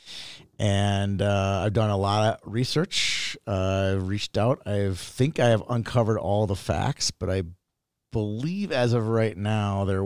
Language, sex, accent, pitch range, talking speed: English, male, American, 95-115 Hz, 165 wpm